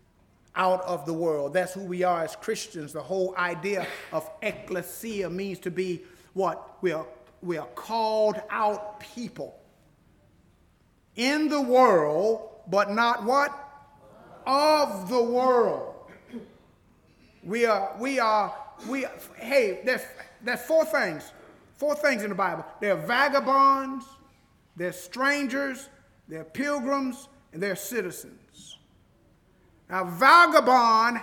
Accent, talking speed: American, 115 wpm